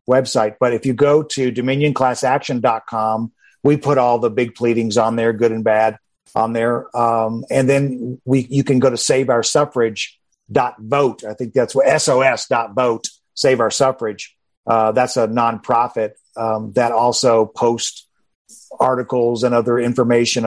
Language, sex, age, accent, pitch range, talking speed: English, male, 50-69, American, 120-165 Hz, 150 wpm